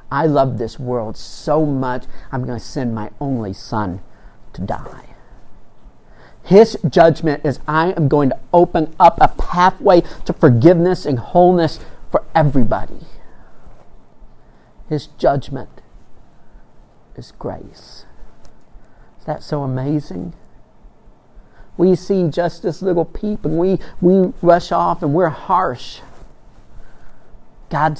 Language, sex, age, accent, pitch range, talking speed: English, male, 50-69, American, 130-175 Hz, 120 wpm